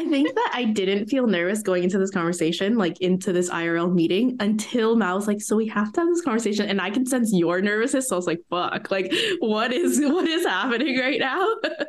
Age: 20-39